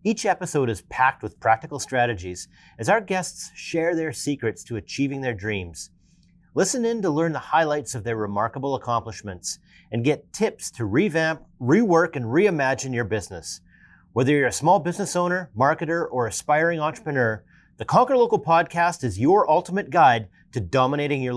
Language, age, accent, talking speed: English, 40-59, American, 165 wpm